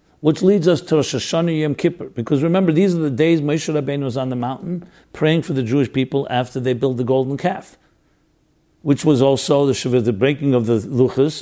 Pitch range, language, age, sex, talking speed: 125-160 Hz, English, 50-69, male, 210 wpm